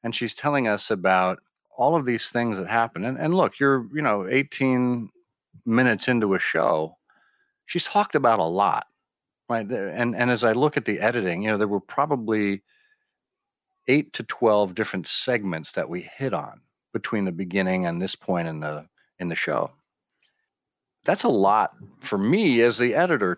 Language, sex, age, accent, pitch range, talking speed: English, male, 40-59, American, 95-130 Hz, 175 wpm